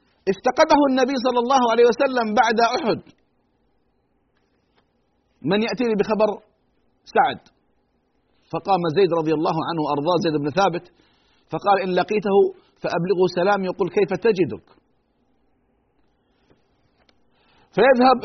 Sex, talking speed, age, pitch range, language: male, 100 wpm, 40-59, 140-225 Hz, Arabic